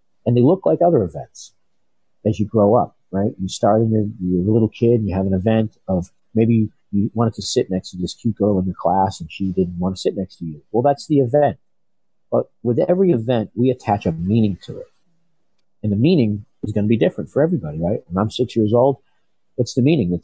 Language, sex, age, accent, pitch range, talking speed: English, male, 50-69, American, 100-145 Hz, 240 wpm